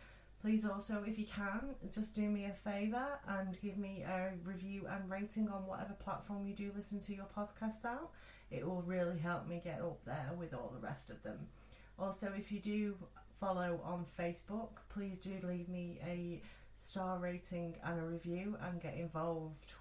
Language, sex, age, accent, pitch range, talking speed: English, female, 30-49, British, 165-200 Hz, 185 wpm